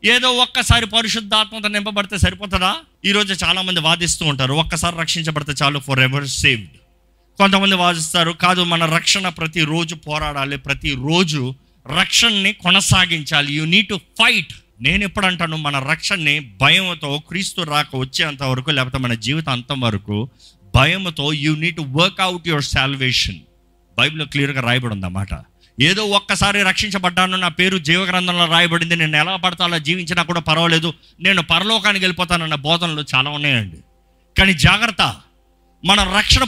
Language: Telugu